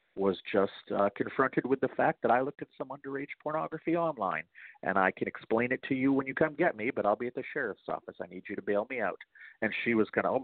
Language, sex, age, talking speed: English, male, 40-59, 270 wpm